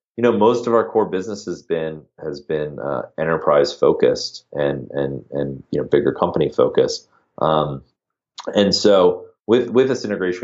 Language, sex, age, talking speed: English, male, 30-49, 165 wpm